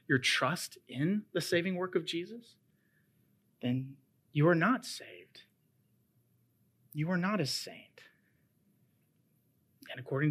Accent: American